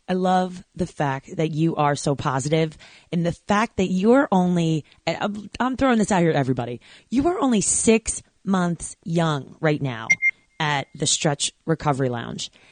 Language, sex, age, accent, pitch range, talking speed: English, female, 30-49, American, 150-190 Hz, 165 wpm